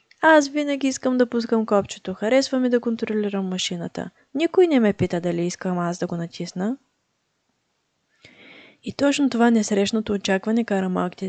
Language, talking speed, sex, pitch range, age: Bulgarian, 150 wpm, female, 190-230 Hz, 20-39